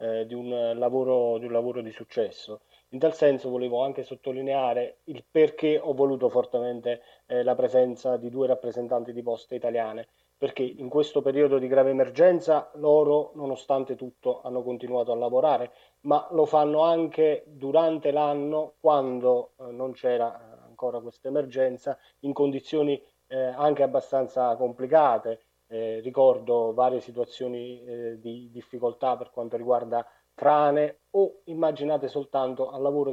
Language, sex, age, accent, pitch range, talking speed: Italian, male, 30-49, native, 125-150 Hz, 135 wpm